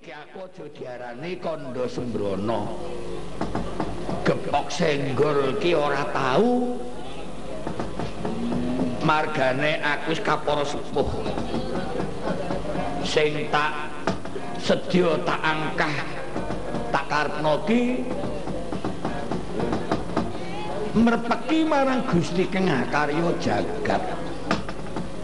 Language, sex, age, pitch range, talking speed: Indonesian, male, 50-69, 150-235 Hz, 60 wpm